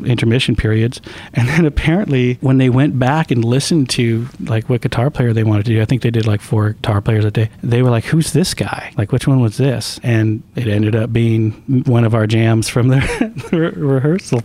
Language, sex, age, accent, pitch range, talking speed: English, male, 40-59, American, 110-125 Hz, 220 wpm